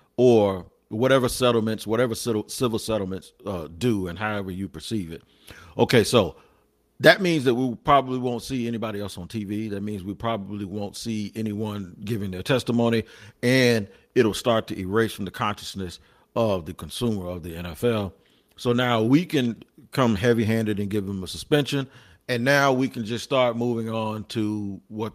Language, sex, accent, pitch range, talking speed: English, male, American, 95-120 Hz, 170 wpm